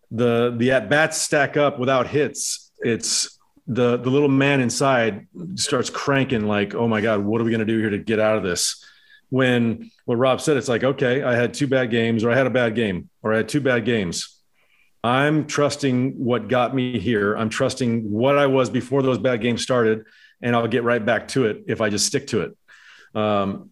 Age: 40-59